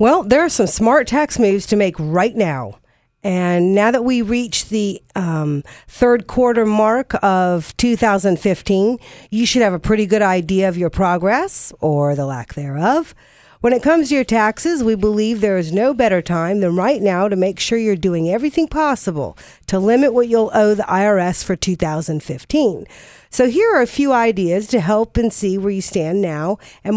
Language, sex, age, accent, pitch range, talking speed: English, female, 50-69, American, 175-240 Hz, 185 wpm